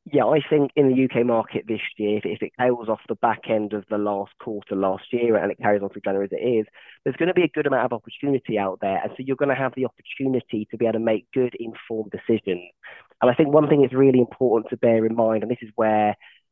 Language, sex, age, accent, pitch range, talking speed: English, male, 20-39, British, 110-140 Hz, 265 wpm